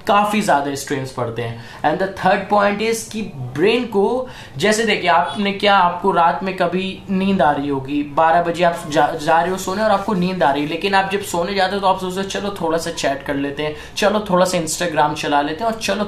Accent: native